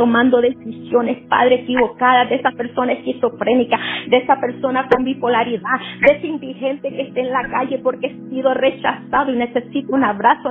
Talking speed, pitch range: 165 wpm, 240-280 Hz